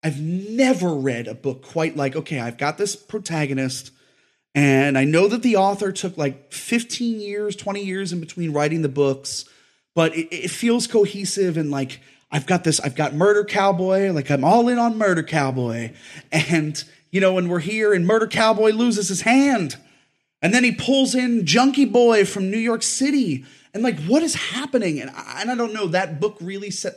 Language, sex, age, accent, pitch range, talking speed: English, male, 30-49, American, 140-200 Hz, 195 wpm